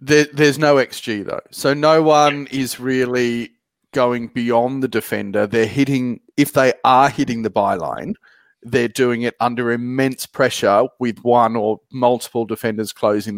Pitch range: 115-135 Hz